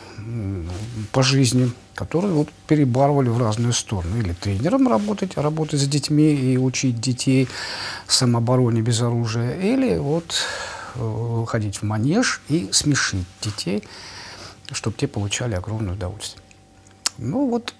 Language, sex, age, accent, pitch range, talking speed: Russian, male, 50-69, native, 105-140 Hz, 120 wpm